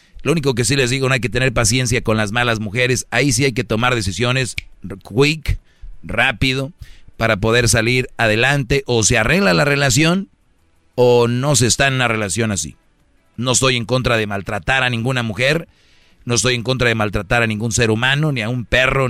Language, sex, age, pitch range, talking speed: Spanish, male, 40-59, 105-130 Hz, 200 wpm